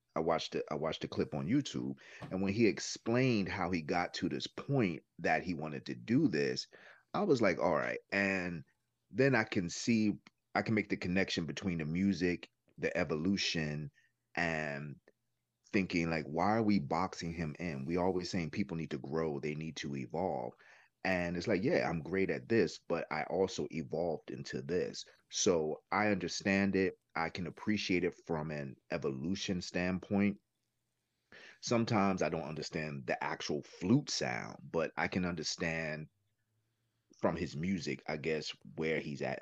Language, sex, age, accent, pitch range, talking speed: English, male, 30-49, American, 80-100 Hz, 170 wpm